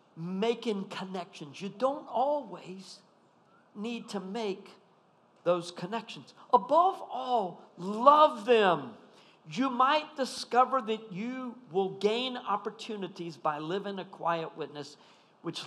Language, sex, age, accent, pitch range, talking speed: English, male, 50-69, American, 170-230 Hz, 105 wpm